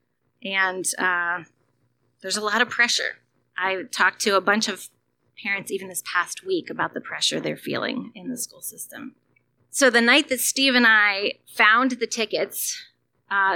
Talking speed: 170 wpm